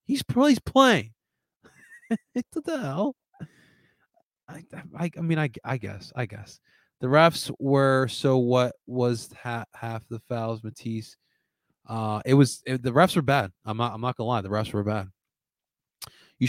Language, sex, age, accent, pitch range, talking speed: English, male, 20-39, American, 110-150 Hz, 165 wpm